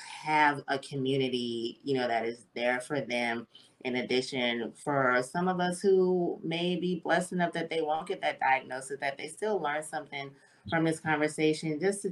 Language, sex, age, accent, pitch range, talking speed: English, female, 30-49, American, 130-165 Hz, 185 wpm